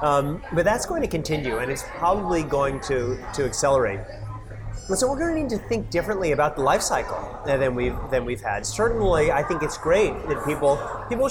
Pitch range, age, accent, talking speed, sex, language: 125-165 Hz, 30-49, American, 200 wpm, male, English